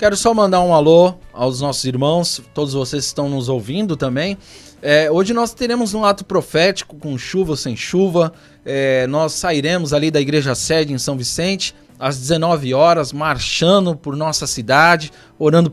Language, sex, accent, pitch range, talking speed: Portuguese, male, Brazilian, 145-190 Hz, 170 wpm